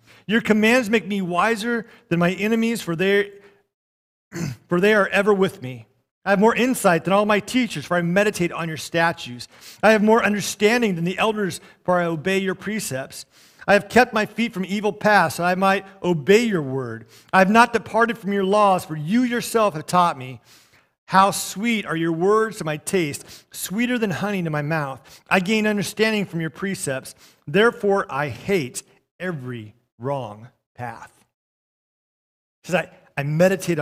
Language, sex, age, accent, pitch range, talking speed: English, male, 40-59, American, 165-220 Hz, 175 wpm